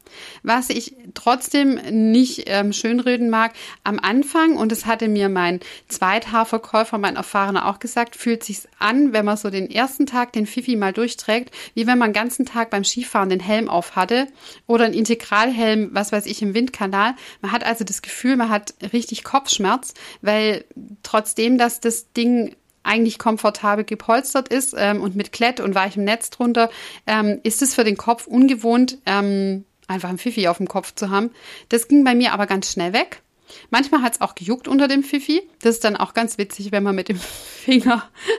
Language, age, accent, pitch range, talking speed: German, 30-49, German, 205-250 Hz, 190 wpm